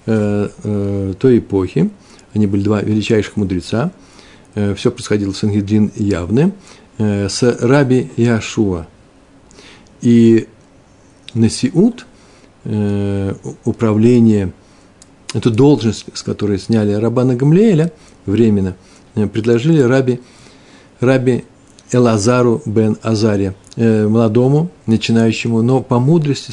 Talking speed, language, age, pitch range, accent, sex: 85 wpm, Russian, 50-69, 105-130 Hz, native, male